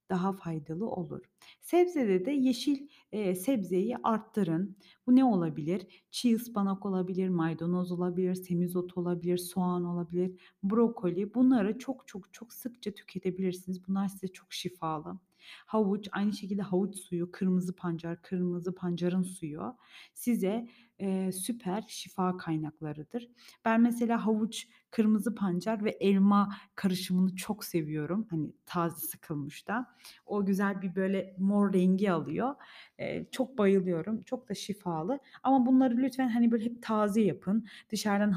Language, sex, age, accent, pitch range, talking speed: Turkish, female, 30-49, native, 180-230 Hz, 130 wpm